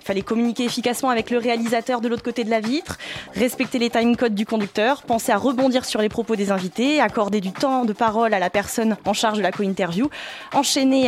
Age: 20-39